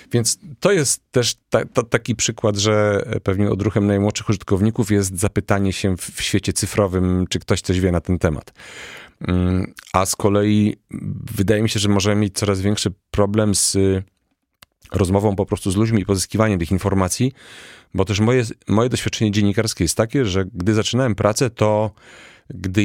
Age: 30-49